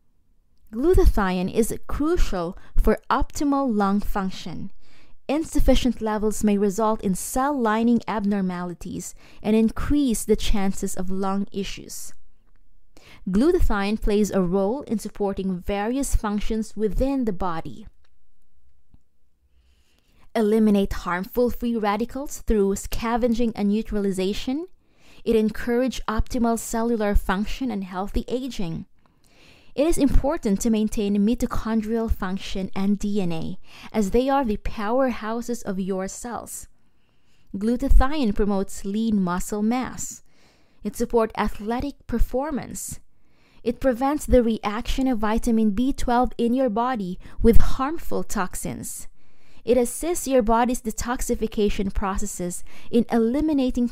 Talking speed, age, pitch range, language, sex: 105 wpm, 20-39, 195-245 Hz, English, female